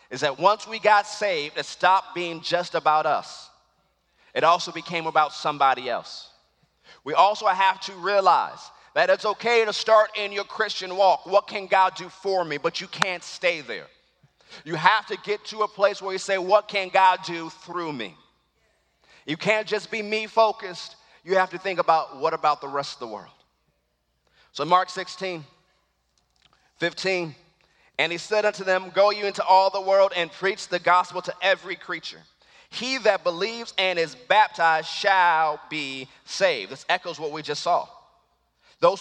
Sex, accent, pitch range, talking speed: male, American, 165-210 Hz, 175 wpm